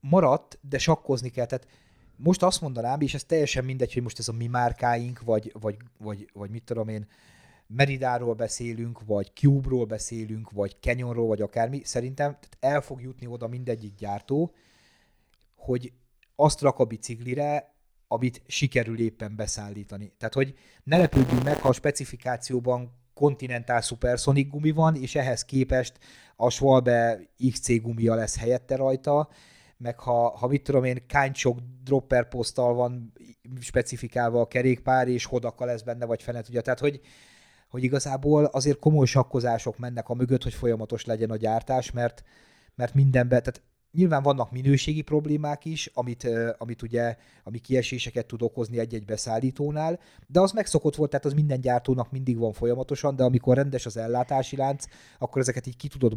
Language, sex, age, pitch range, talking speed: Hungarian, male, 30-49, 115-140 Hz, 160 wpm